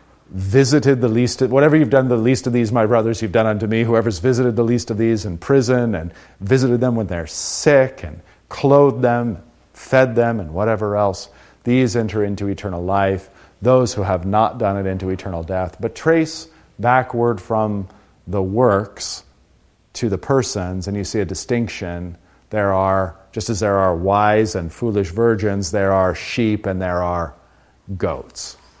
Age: 40-59